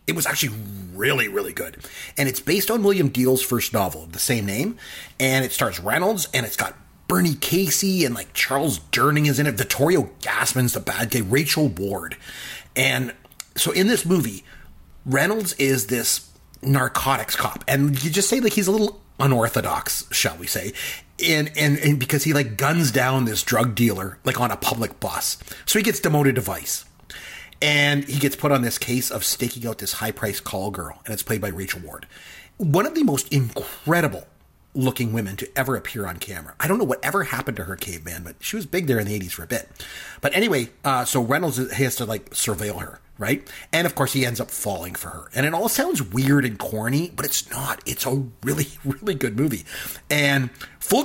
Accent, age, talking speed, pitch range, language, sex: American, 30-49, 200 wpm, 115-155 Hz, English, male